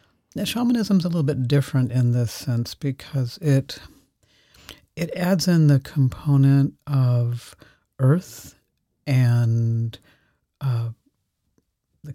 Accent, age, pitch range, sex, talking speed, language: American, 60-79, 120-150 Hz, male, 105 wpm, English